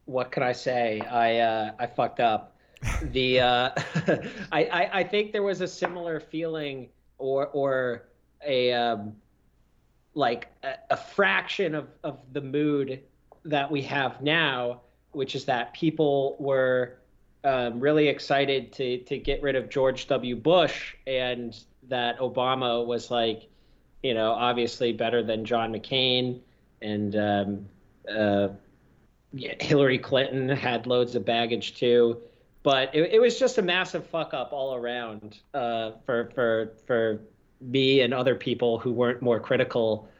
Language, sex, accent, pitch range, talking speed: English, male, American, 115-135 Hz, 145 wpm